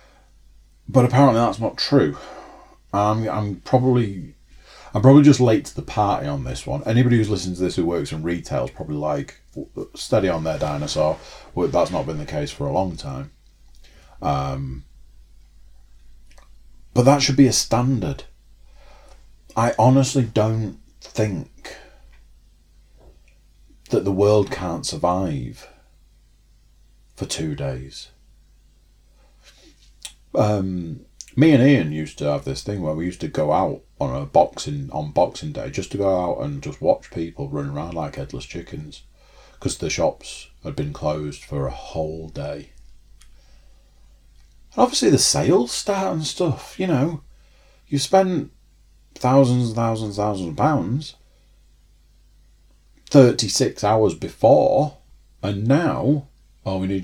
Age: 40-59